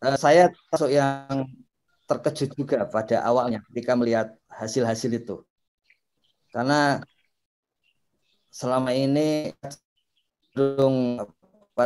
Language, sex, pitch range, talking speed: Indonesian, male, 115-140 Hz, 70 wpm